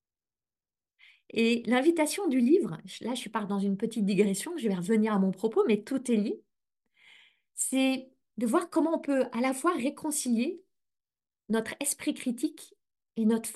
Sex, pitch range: female, 210-280 Hz